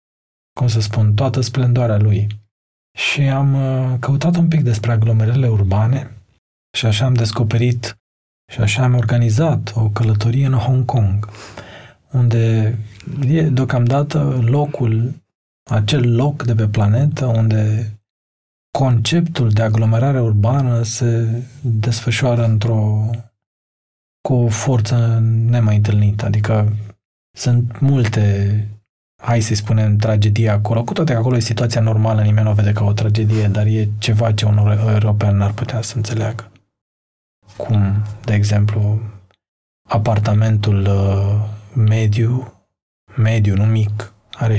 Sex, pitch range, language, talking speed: male, 105-120 Hz, Romanian, 120 wpm